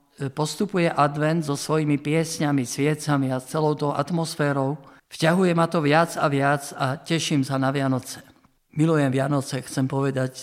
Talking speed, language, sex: 145 wpm, Slovak, male